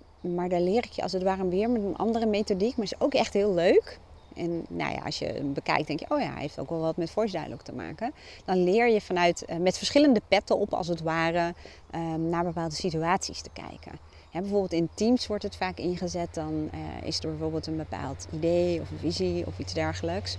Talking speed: 225 wpm